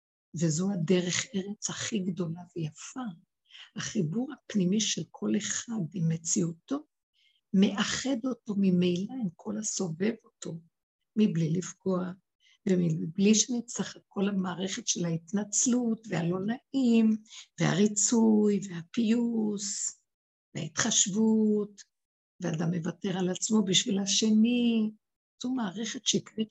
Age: 60-79